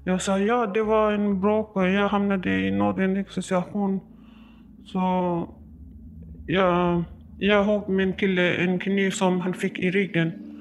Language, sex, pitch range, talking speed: Swedish, male, 175-215 Hz, 145 wpm